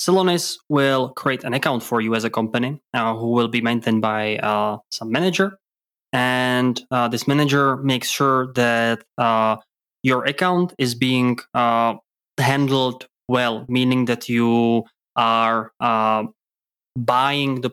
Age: 20-39